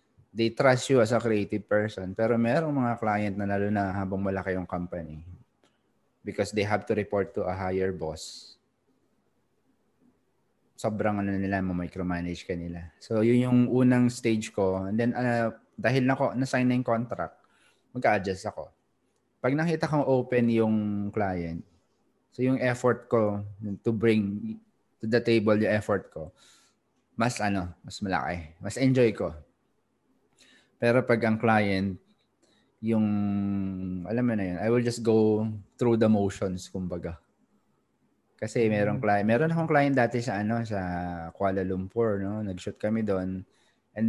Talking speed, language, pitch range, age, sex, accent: 145 wpm, Filipino, 95-120 Hz, 20-39, male, native